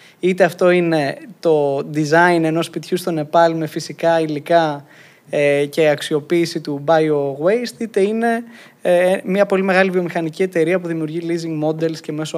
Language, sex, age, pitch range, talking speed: Greek, male, 20-39, 150-180 Hz, 140 wpm